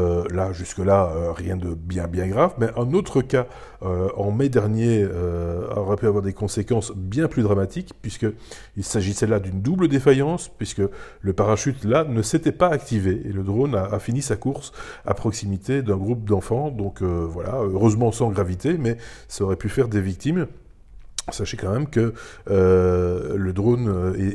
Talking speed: 180 wpm